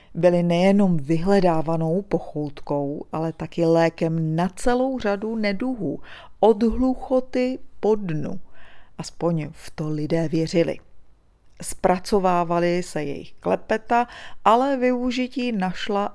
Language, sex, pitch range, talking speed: Czech, female, 165-225 Hz, 100 wpm